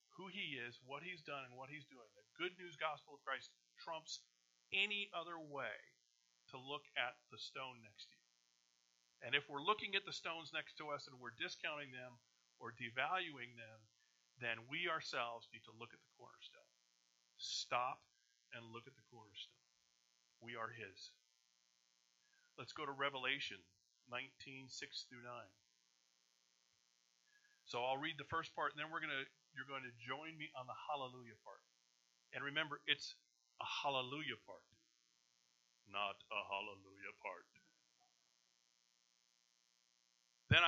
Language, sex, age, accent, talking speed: English, male, 40-59, American, 145 wpm